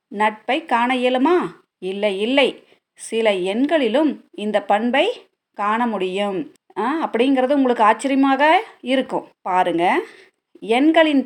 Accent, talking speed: native, 90 wpm